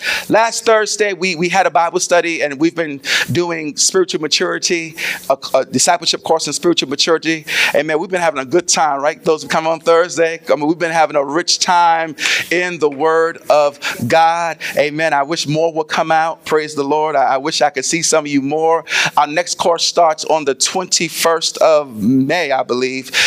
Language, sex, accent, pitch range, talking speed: English, male, American, 145-180 Hz, 195 wpm